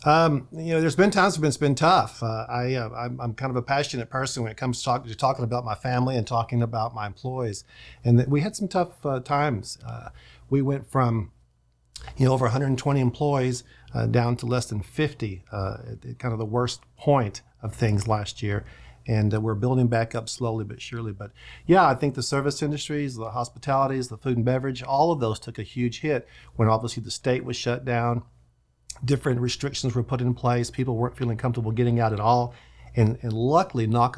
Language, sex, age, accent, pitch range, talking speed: English, male, 50-69, American, 110-125 Hz, 215 wpm